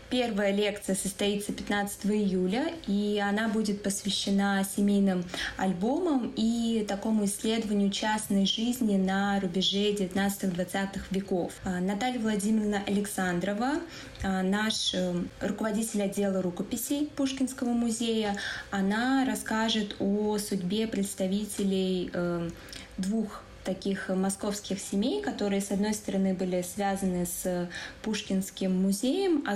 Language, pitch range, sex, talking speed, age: Russian, 190-225 Hz, female, 95 wpm, 20-39